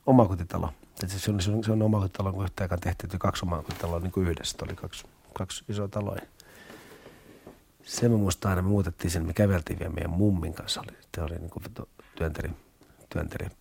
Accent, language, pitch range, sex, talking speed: native, Finnish, 90-105 Hz, male, 165 wpm